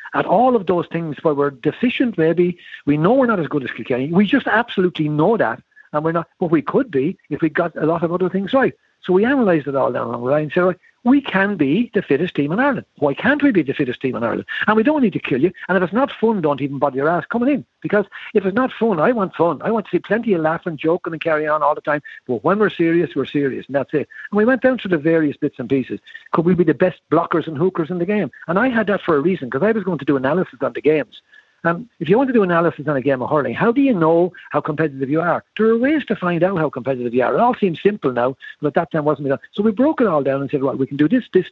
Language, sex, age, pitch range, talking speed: English, male, 60-79, 150-205 Hz, 305 wpm